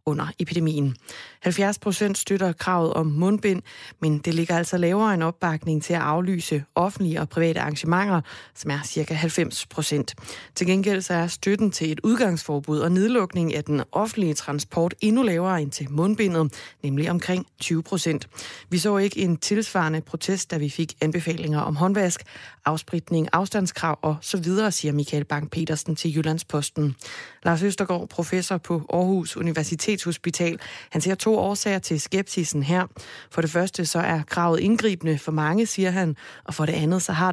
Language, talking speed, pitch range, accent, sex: Danish, 160 wpm, 160-190 Hz, native, female